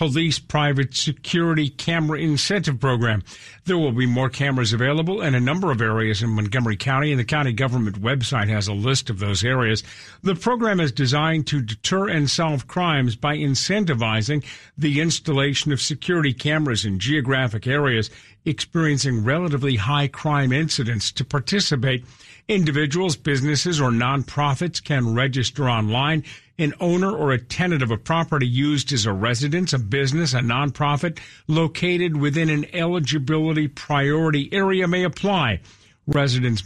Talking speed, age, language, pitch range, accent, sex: 145 wpm, 50-69, English, 125-160 Hz, American, male